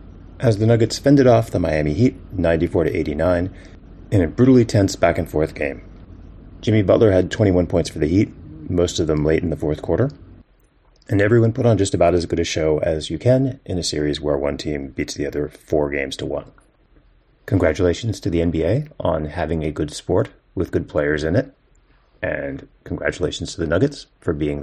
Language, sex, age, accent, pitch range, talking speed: English, male, 30-49, American, 80-110 Hz, 190 wpm